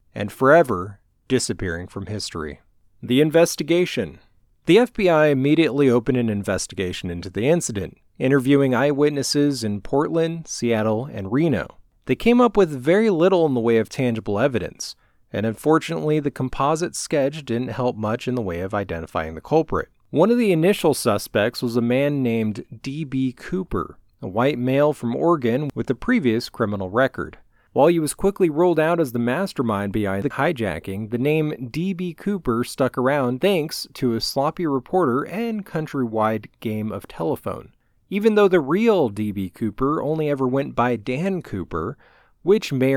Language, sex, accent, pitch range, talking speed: English, male, American, 110-160 Hz, 160 wpm